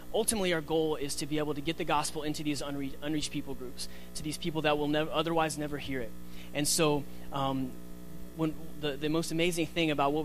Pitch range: 135-160 Hz